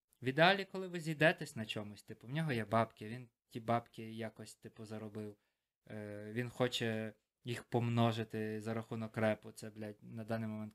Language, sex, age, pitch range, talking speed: Ukrainian, male, 20-39, 110-130 Hz, 175 wpm